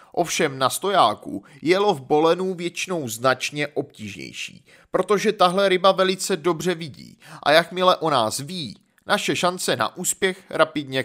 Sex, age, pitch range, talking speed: male, 30-49, 140-195 Hz, 135 wpm